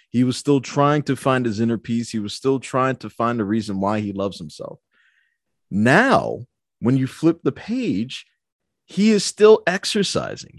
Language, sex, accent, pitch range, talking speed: English, male, American, 110-145 Hz, 175 wpm